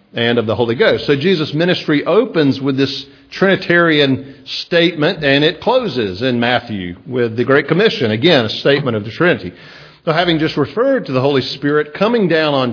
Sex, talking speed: male, 185 wpm